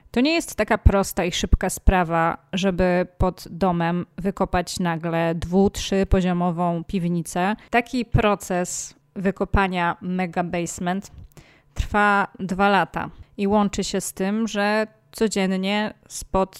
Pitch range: 175-205 Hz